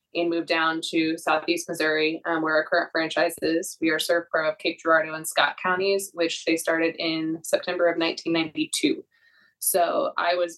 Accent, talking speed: American, 180 wpm